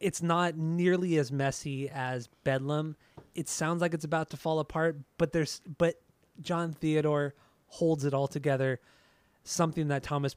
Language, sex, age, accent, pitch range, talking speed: English, male, 20-39, American, 135-165 Hz, 155 wpm